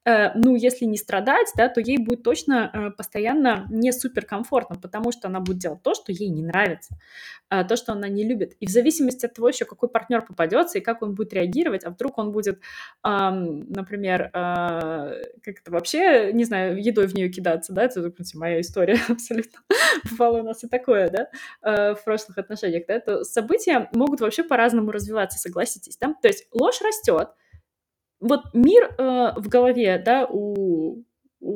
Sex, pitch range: female, 200-250 Hz